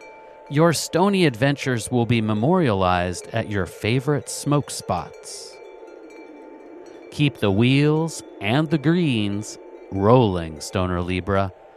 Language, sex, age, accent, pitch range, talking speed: English, male, 40-59, American, 105-165 Hz, 100 wpm